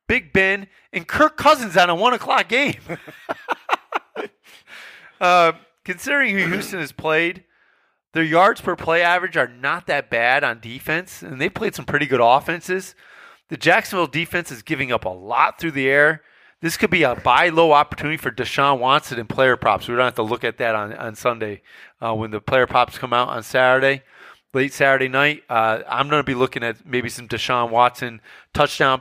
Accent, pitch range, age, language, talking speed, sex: American, 125-180 Hz, 30-49, English, 190 wpm, male